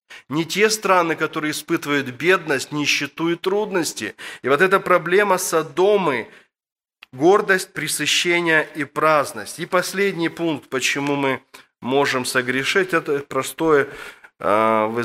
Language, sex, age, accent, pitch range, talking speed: Russian, male, 20-39, native, 130-160 Hz, 110 wpm